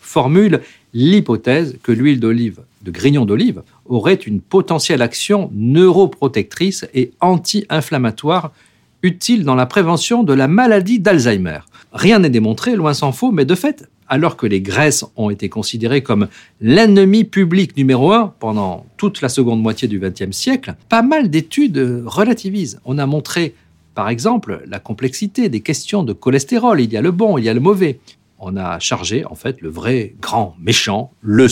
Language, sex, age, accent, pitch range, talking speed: French, male, 50-69, French, 115-190 Hz, 165 wpm